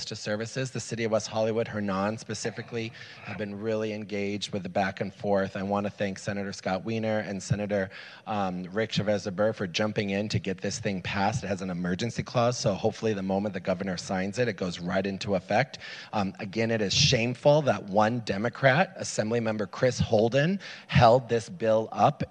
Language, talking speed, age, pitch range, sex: English, 195 wpm, 30-49, 100-120 Hz, male